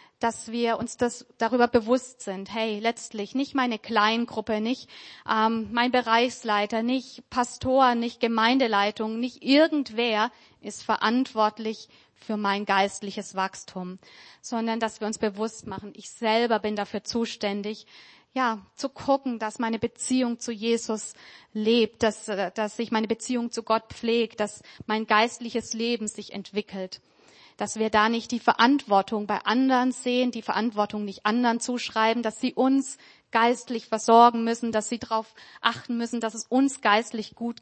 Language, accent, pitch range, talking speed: German, German, 210-235 Hz, 145 wpm